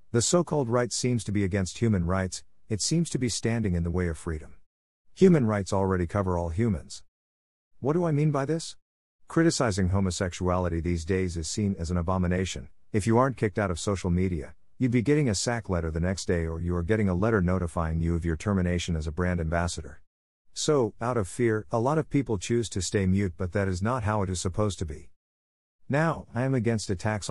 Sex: male